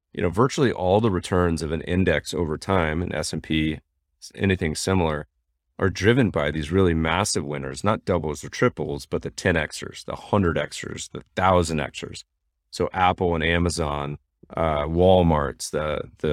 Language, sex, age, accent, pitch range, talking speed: English, male, 30-49, American, 75-95 Hz, 170 wpm